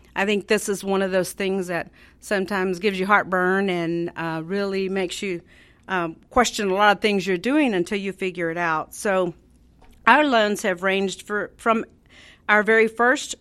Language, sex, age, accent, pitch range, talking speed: English, female, 50-69, American, 180-215 Hz, 180 wpm